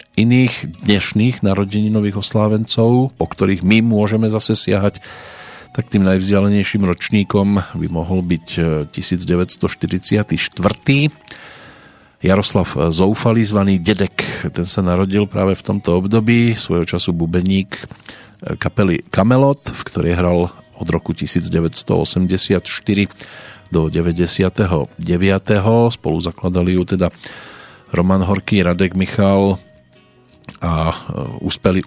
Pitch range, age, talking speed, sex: 85-105 Hz, 40-59, 100 wpm, male